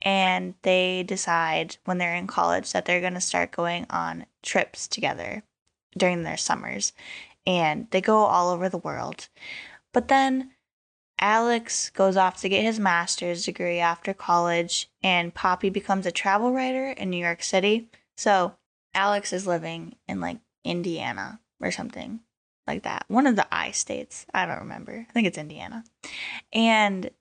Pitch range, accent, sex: 175-225 Hz, American, female